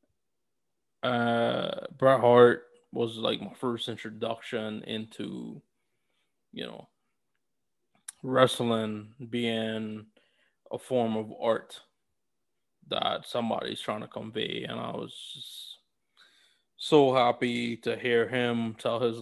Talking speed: 100 wpm